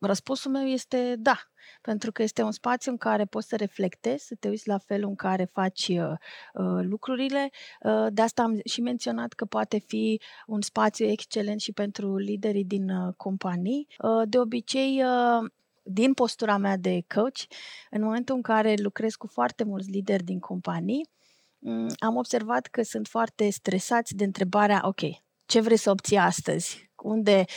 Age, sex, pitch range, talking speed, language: 30-49, female, 195-245 Hz, 155 wpm, Romanian